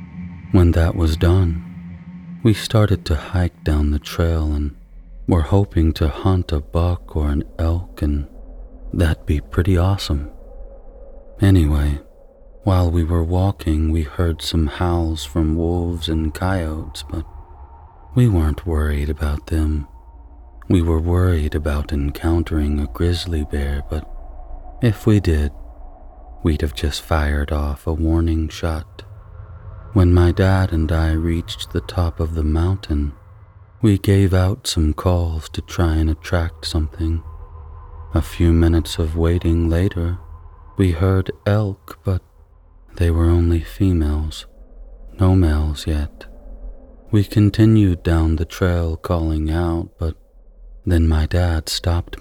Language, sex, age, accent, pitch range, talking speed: English, male, 30-49, American, 80-90 Hz, 130 wpm